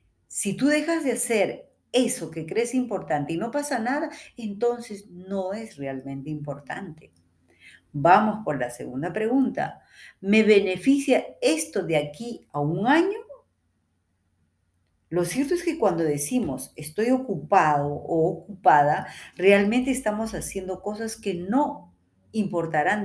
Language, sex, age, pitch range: Spanish, female, 40-59, 145-220 Hz